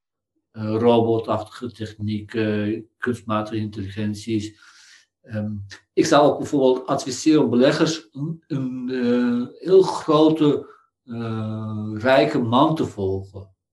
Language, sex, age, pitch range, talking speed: Dutch, male, 60-79, 105-135 Hz, 80 wpm